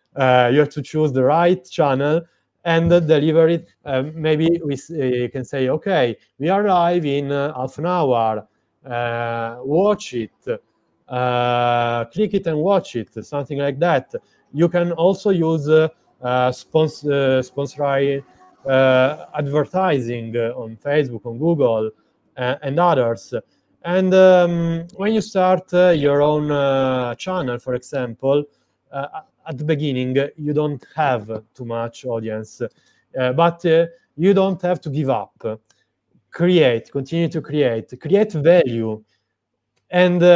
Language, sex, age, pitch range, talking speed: English, male, 30-49, 130-175 Hz, 140 wpm